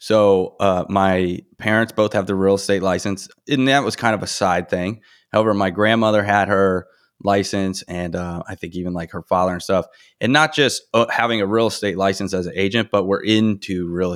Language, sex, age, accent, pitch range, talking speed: English, male, 30-49, American, 95-110 Hz, 210 wpm